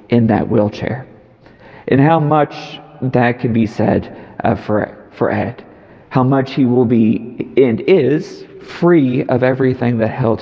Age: 40-59